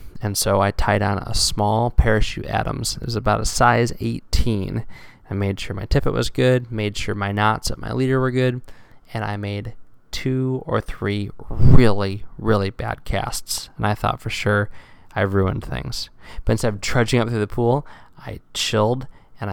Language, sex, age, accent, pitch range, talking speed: English, male, 20-39, American, 100-120 Hz, 185 wpm